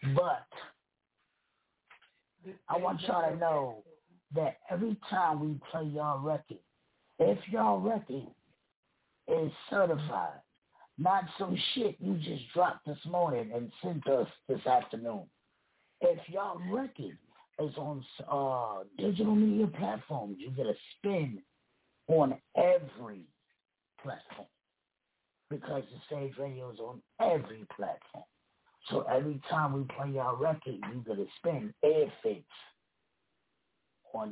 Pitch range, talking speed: 125-170 Hz, 120 wpm